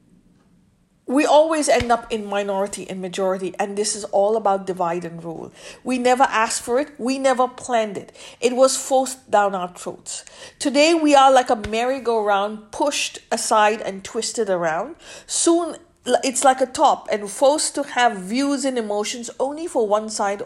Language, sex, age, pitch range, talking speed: English, female, 50-69, 205-280 Hz, 170 wpm